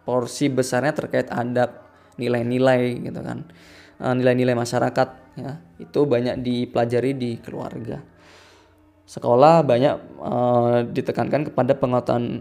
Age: 20-39